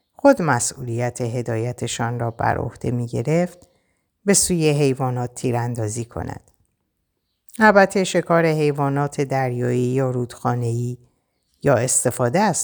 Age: 50-69